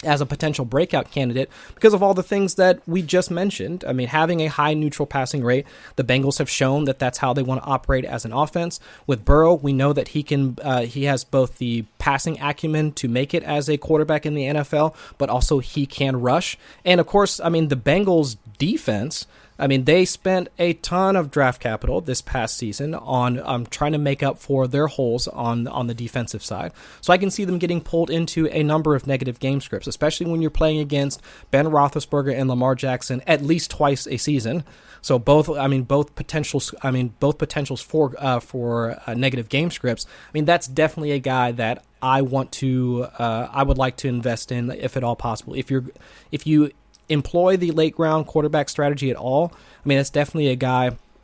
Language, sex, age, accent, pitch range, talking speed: English, male, 30-49, American, 130-155 Hz, 215 wpm